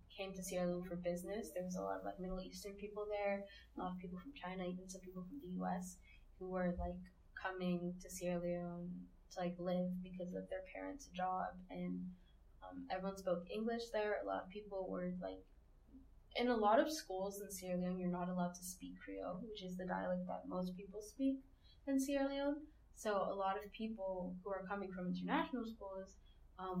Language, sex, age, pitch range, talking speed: English, female, 10-29, 175-205 Hz, 205 wpm